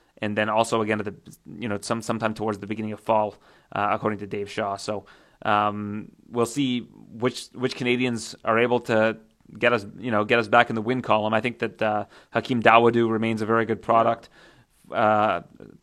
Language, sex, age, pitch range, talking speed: English, male, 30-49, 110-130 Hz, 200 wpm